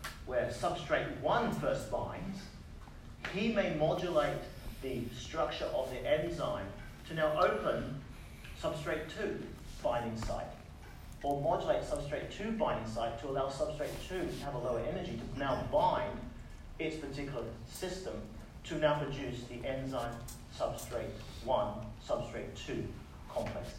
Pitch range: 110-150 Hz